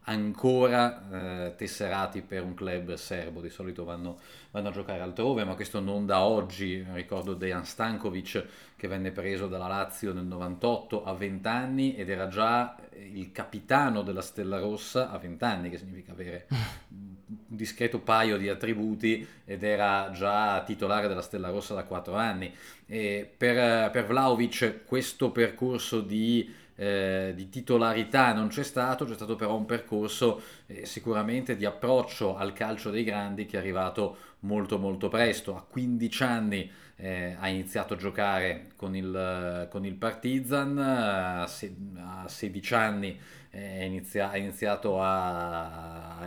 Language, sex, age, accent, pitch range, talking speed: Italian, male, 30-49, native, 95-115 Hz, 145 wpm